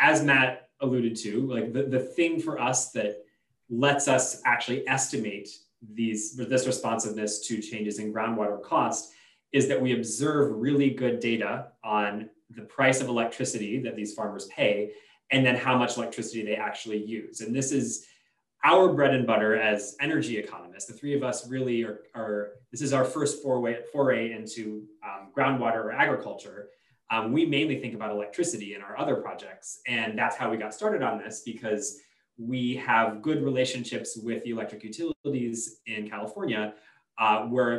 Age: 20-39